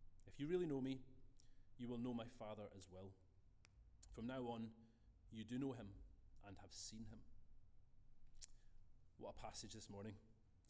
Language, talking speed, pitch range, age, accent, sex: English, 155 wpm, 100-130 Hz, 30-49, British, male